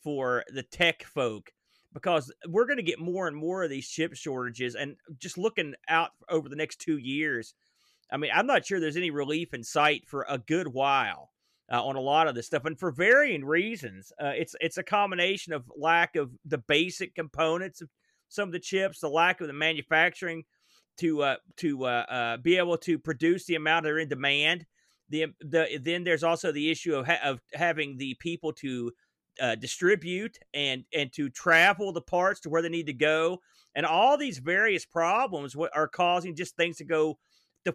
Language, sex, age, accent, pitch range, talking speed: English, male, 40-59, American, 150-175 Hz, 200 wpm